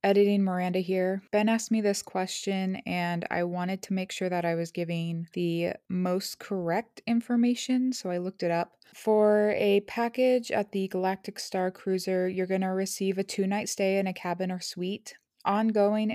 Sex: female